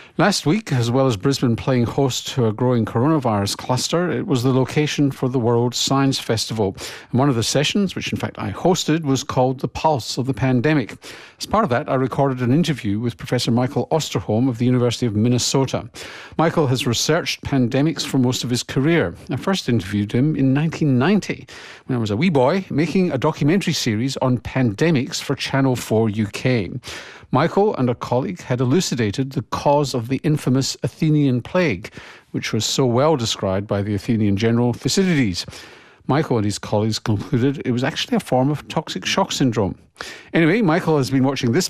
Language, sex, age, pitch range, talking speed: English, male, 50-69, 115-140 Hz, 190 wpm